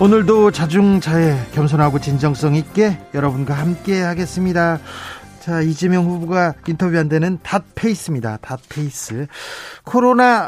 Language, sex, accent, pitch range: Korean, male, native, 140-180 Hz